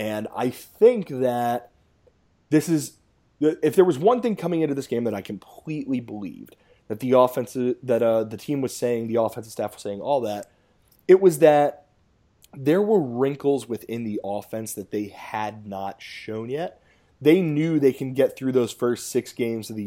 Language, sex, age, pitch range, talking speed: English, male, 20-39, 110-145 Hz, 185 wpm